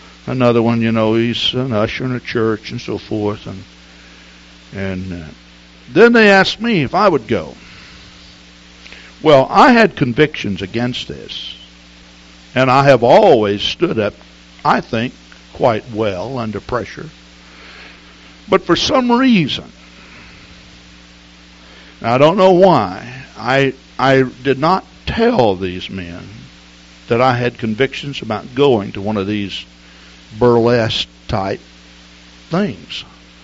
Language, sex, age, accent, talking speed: English, male, 60-79, American, 125 wpm